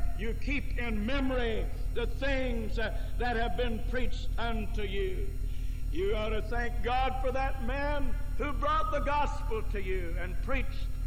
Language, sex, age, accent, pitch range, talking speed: English, male, 60-79, American, 250-290 Hz, 150 wpm